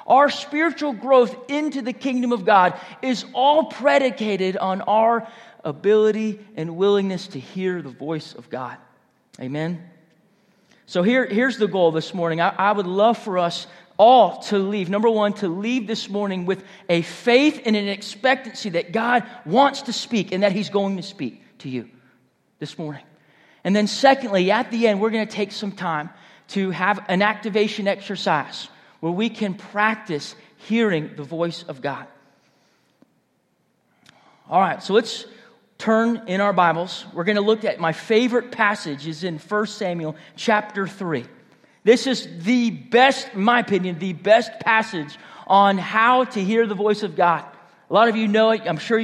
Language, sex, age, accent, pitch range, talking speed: English, male, 30-49, American, 175-225 Hz, 170 wpm